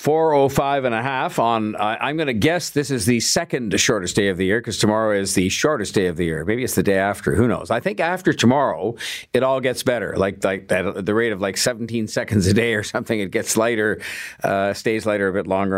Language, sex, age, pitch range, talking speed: English, male, 50-69, 90-110 Hz, 245 wpm